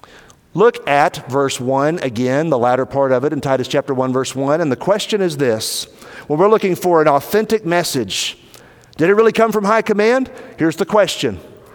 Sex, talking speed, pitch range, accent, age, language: male, 195 wpm, 135-200 Hz, American, 50-69, English